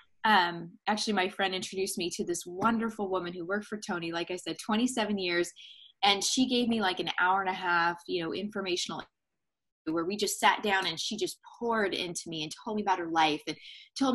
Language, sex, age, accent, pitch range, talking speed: English, female, 20-39, American, 175-220 Hz, 215 wpm